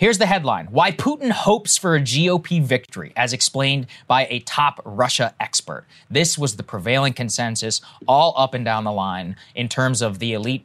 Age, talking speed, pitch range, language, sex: 20-39, 185 wpm, 120-160 Hz, English, male